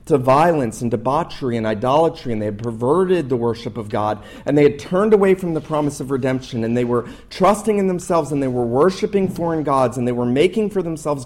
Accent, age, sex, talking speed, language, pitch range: American, 30-49, male, 225 wpm, English, 120-150 Hz